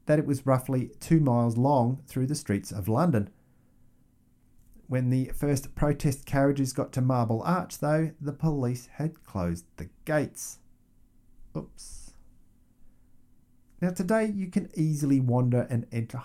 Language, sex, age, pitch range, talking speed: English, male, 50-69, 115-160 Hz, 135 wpm